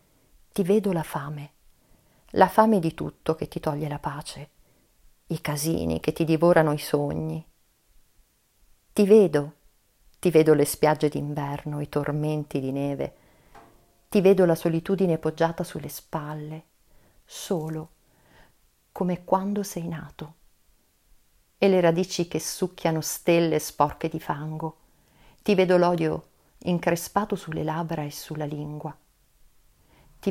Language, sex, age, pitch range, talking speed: Italian, female, 40-59, 150-180 Hz, 125 wpm